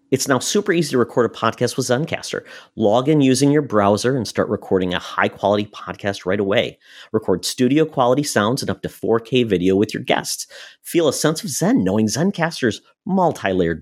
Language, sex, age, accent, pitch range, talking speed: English, male, 40-59, American, 100-150 Hz, 180 wpm